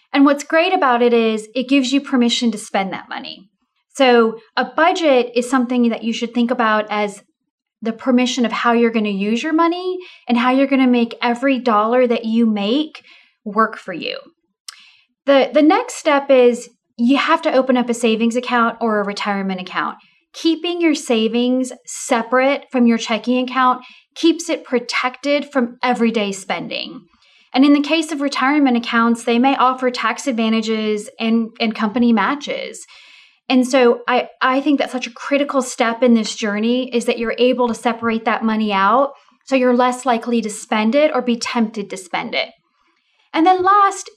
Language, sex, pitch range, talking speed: English, female, 225-275 Hz, 180 wpm